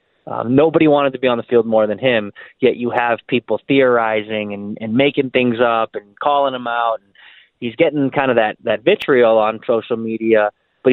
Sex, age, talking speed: male, 20-39, 205 wpm